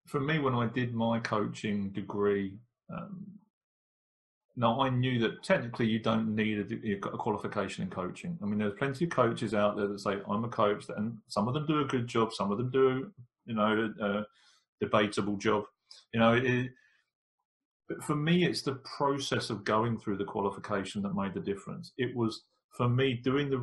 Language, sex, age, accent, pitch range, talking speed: English, male, 30-49, British, 105-130 Hz, 200 wpm